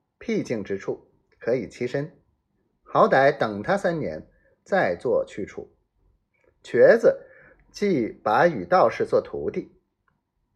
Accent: native